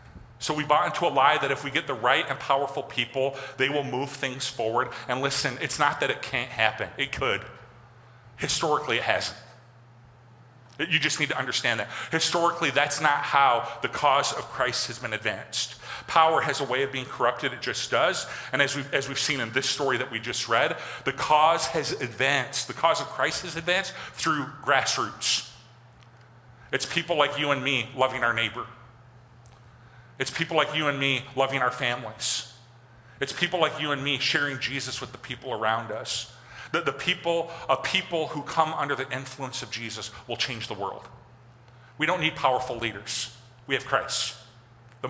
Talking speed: 190 wpm